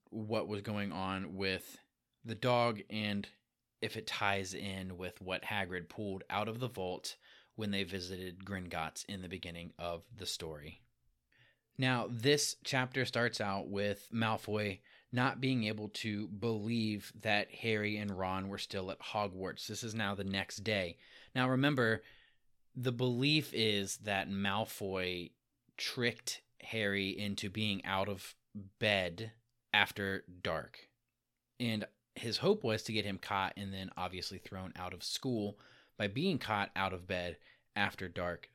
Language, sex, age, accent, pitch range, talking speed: English, male, 30-49, American, 95-110 Hz, 150 wpm